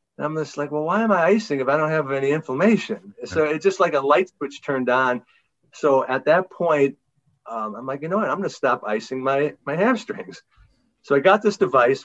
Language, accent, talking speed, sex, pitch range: English, American, 235 wpm, male, 115-155 Hz